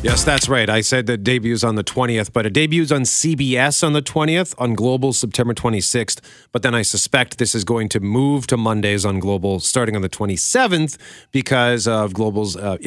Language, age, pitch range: English, 40-59, 115-155 Hz